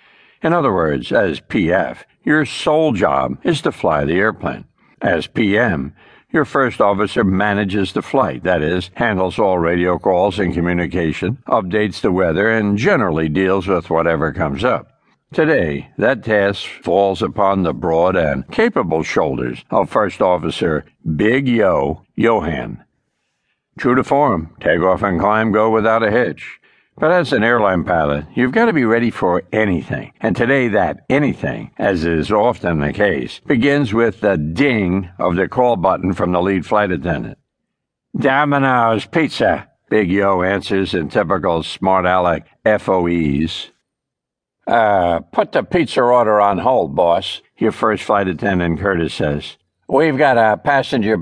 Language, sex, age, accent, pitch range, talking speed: English, male, 60-79, American, 90-110 Hz, 150 wpm